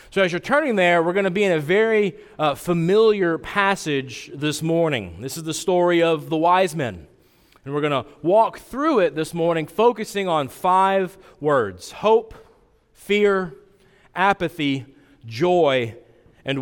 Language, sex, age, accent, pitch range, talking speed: English, male, 30-49, American, 145-195 Hz, 155 wpm